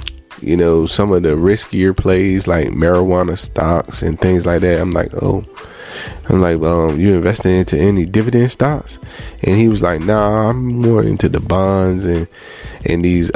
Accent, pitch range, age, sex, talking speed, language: American, 85-100 Hz, 20-39, male, 180 wpm, English